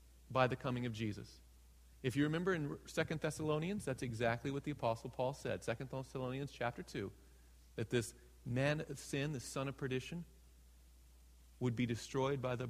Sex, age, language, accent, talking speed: male, 40-59, English, American, 170 wpm